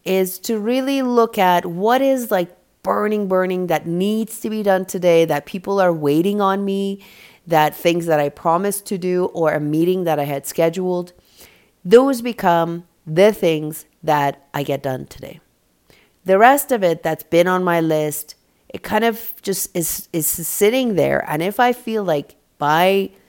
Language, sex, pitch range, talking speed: English, female, 145-195 Hz, 175 wpm